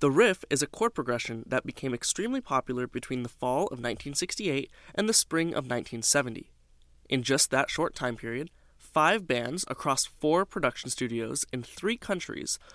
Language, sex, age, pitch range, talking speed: English, male, 20-39, 120-160 Hz, 165 wpm